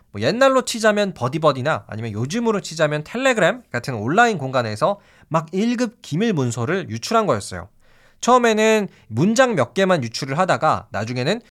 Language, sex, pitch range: Korean, male, 130-215 Hz